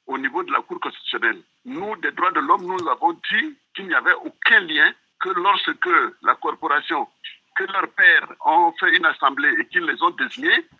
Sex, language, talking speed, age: male, French, 195 wpm, 60-79